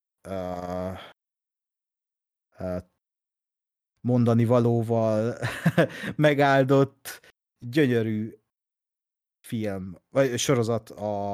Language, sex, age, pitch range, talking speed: Hungarian, male, 30-49, 100-125 Hz, 55 wpm